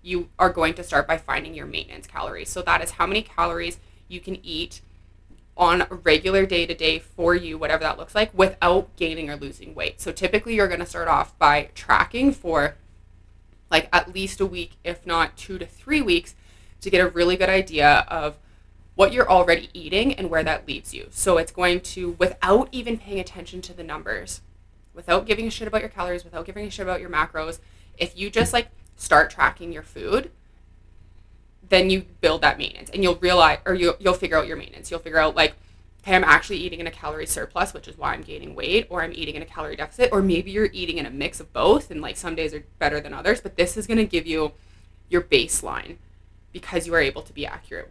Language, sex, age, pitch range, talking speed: English, female, 20-39, 150-190 Hz, 225 wpm